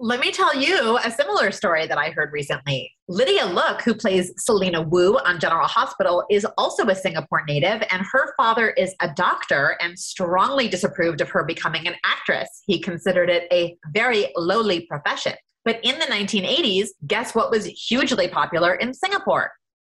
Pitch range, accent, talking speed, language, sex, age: 175-225 Hz, American, 175 wpm, English, female, 30-49